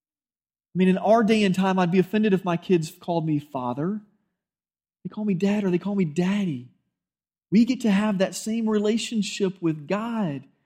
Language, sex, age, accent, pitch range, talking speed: English, male, 30-49, American, 160-215 Hz, 190 wpm